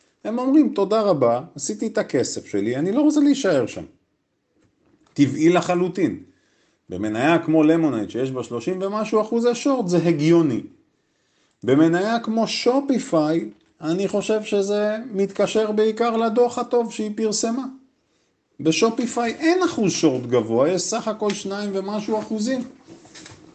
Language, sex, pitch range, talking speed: Hebrew, male, 150-230 Hz, 125 wpm